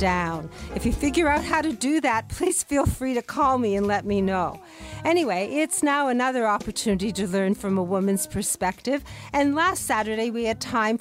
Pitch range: 180-240 Hz